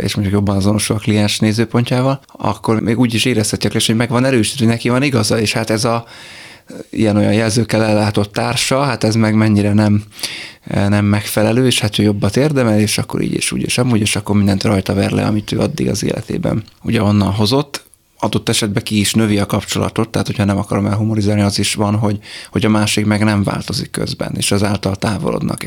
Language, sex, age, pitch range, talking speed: Hungarian, male, 20-39, 100-115 Hz, 205 wpm